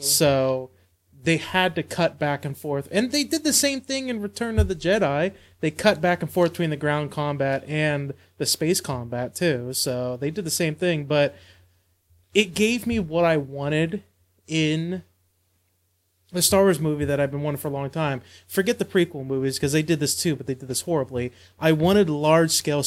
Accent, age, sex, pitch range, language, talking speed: American, 30-49, male, 130-175 Hz, English, 200 wpm